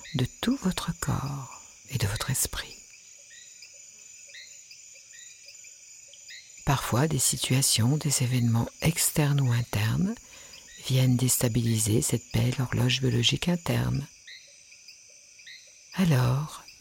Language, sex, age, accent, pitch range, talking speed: French, female, 50-69, French, 125-170 Hz, 85 wpm